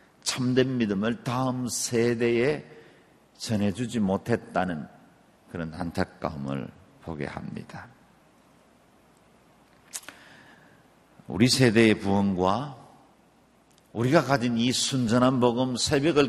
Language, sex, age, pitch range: Korean, male, 50-69, 100-125 Hz